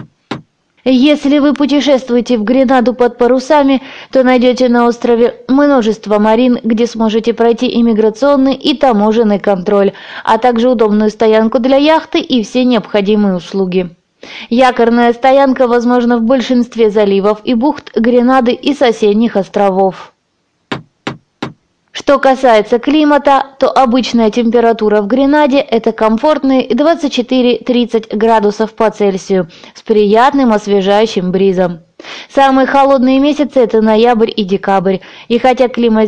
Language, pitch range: Russian, 215-265 Hz